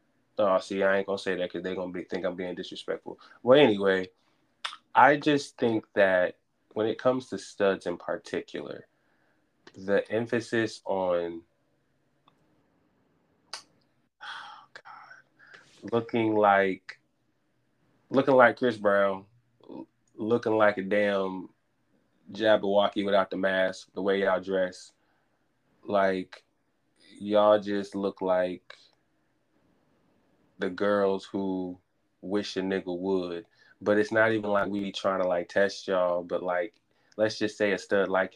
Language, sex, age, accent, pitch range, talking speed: English, male, 20-39, American, 95-115 Hz, 130 wpm